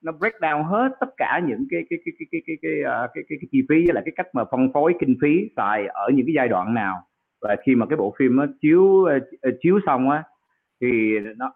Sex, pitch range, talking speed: male, 120-160 Hz, 220 wpm